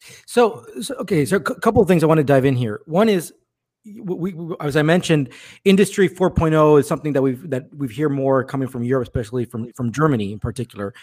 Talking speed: 210 wpm